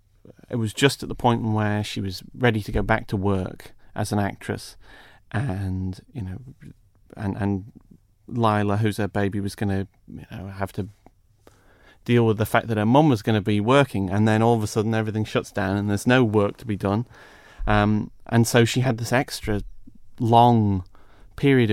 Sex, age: male, 30-49